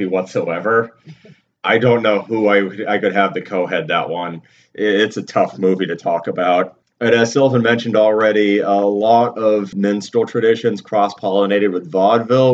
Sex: male